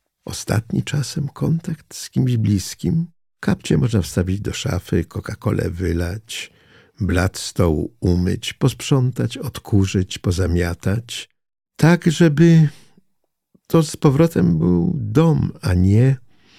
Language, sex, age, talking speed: Polish, male, 50-69, 100 wpm